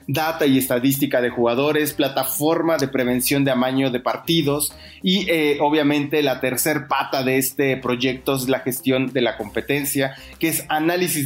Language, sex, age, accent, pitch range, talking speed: English, male, 30-49, Mexican, 130-160 Hz, 160 wpm